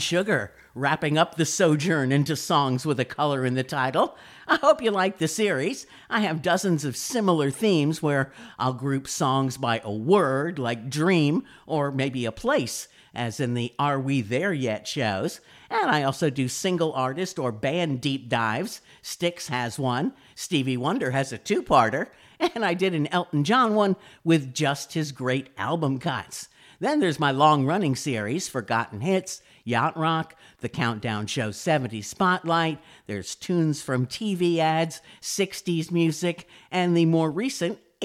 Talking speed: 165 wpm